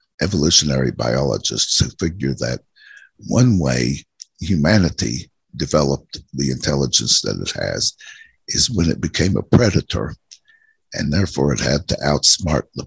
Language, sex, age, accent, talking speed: English, male, 60-79, American, 125 wpm